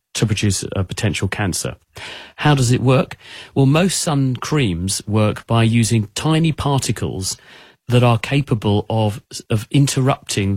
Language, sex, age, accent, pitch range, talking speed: English, male, 40-59, British, 105-130 Hz, 135 wpm